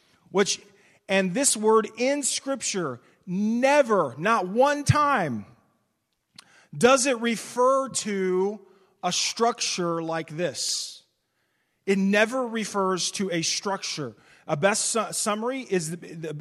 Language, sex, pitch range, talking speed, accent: English, male, 170-215 Hz, 115 wpm, American